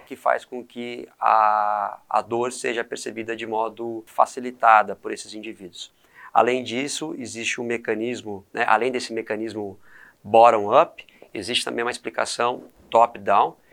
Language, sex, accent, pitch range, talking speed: Portuguese, male, Brazilian, 110-125 Hz, 130 wpm